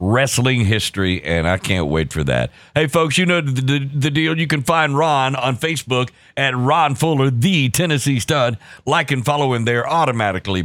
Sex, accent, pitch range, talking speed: male, American, 115-155 Hz, 185 wpm